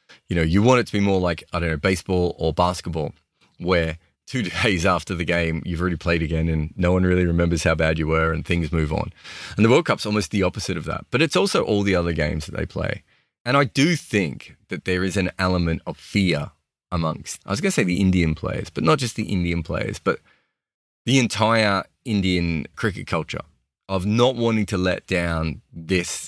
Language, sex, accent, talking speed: English, male, Australian, 220 wpm